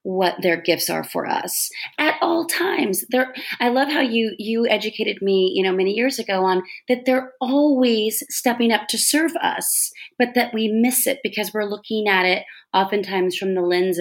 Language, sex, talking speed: English, female, 195 wpm